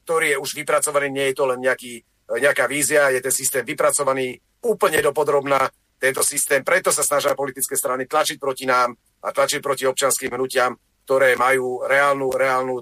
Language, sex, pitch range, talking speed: Slovak, male, 130-170 Hz, 170 wpm